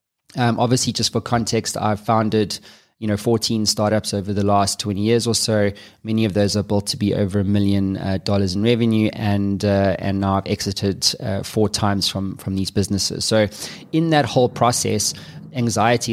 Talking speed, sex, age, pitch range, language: 190 wpm, male, 20-39, 100-115 Hz, English